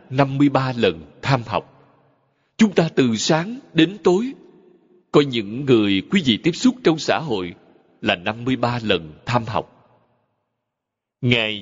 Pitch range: 115-160 Hz